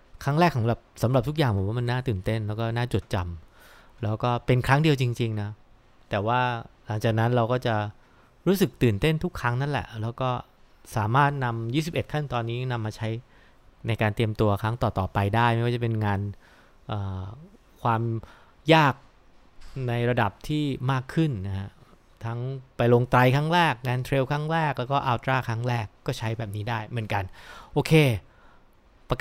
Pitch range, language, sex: 105-130 Hz, English, male